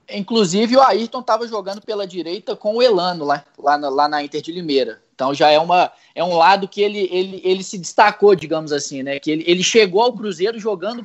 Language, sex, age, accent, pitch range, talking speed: Portuguese, male, 20-39, Brazilian, 155-205 Hz, 225 wpm